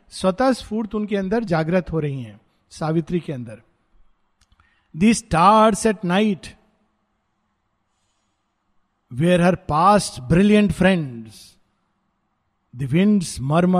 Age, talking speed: 50-69, 90 wpm